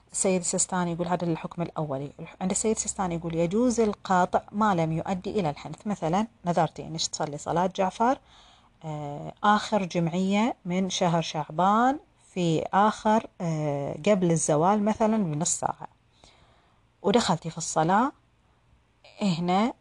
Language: Arabic